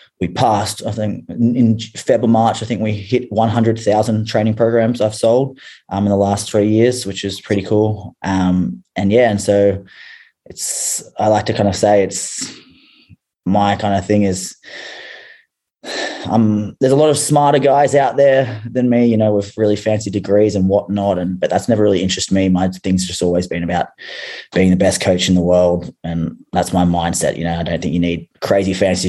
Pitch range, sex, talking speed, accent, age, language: 90-105 Hz, male, 200 wpm, Australian, 20-39, English